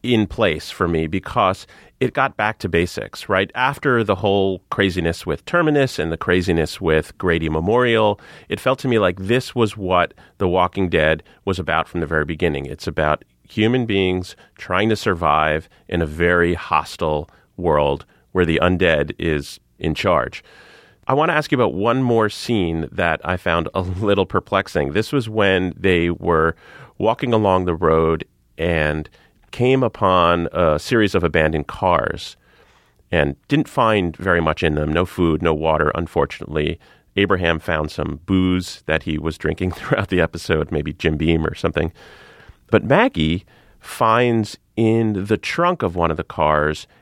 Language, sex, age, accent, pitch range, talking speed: English, male, 30-49, American, 80-110 Hz, 165 wpm